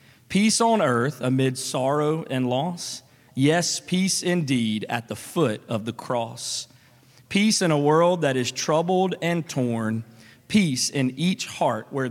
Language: English